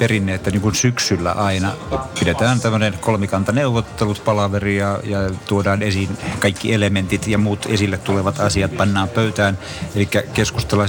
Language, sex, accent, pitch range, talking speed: Finnish, male, native, 100-110 Hz, 125 wpm